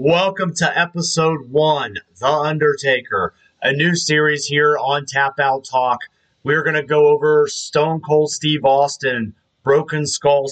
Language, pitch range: English, 130-150 Hz